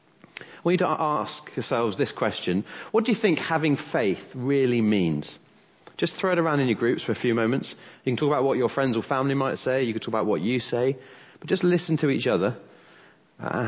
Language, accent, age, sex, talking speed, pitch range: English, British, 30-49, male, 225 wpm, 105-140 Hz